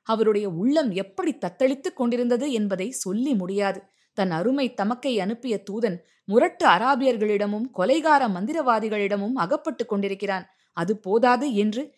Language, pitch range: Tamil, 185-240 Hz